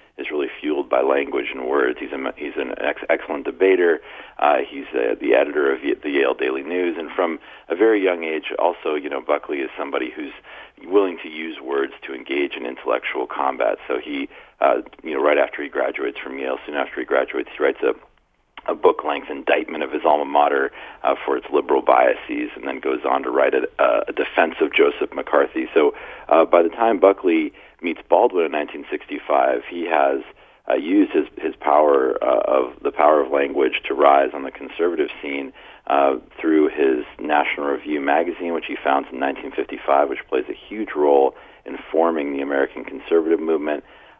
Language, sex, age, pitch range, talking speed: English, male, 40-59, 345-430 Hz, 190 wpm